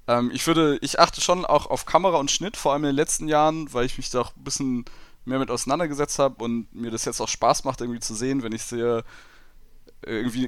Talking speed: 235 wpm